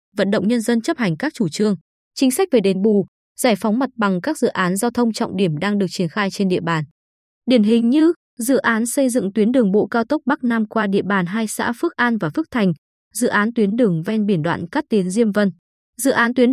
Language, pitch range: Vietnamese, 195-245 Hz